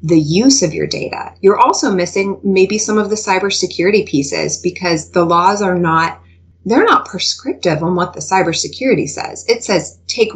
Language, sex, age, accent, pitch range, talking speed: English, female, 30-49, American, 150-205 Hz, 175 wpm